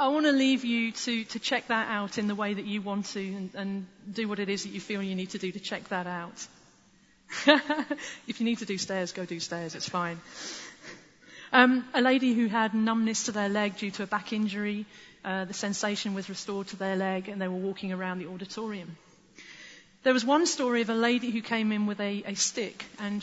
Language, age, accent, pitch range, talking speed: English, 40-59, British, 200-250 Hz, 230 wpm